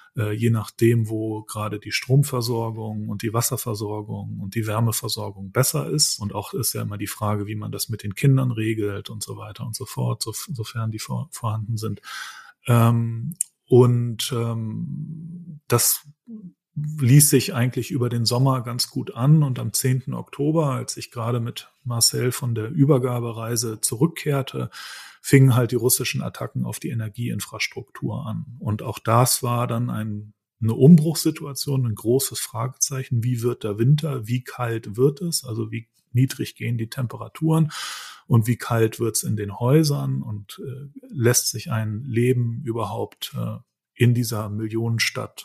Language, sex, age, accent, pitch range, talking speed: German, male, 30-49, German, 110-130 Hz, 155 wpm